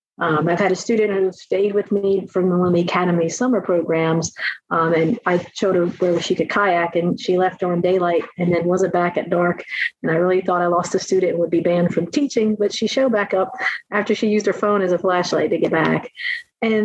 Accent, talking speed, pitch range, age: American, 230 wpm, 170-195 Hz, 40-59